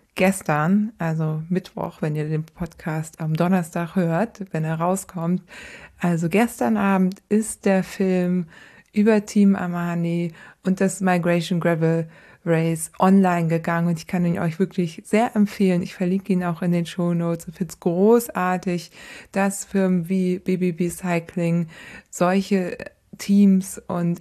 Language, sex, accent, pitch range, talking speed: German, female, German, 175-205 Hz, 140 wpm